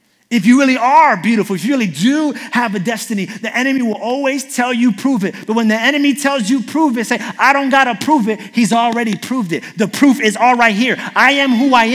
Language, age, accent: English, 30-49, American